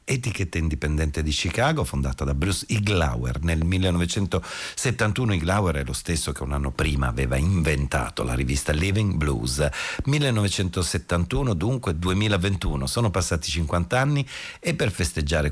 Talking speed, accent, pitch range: 130 wpm, native, 80-105 Hz